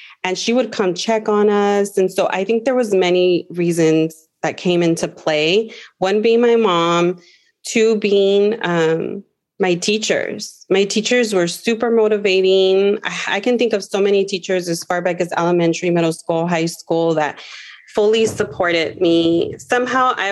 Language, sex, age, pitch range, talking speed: English, female, 30-49, 175-215 Hz, 160 wpm